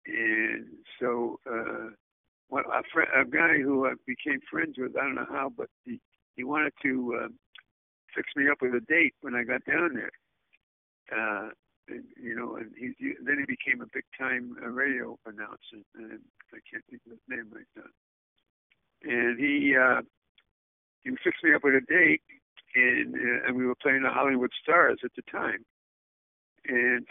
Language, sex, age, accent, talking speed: English, male, 60-79, American, 170 wpm